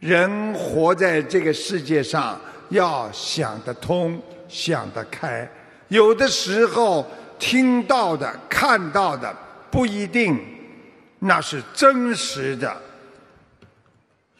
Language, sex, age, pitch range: Chinese, male, 50-69, 160-240 Hz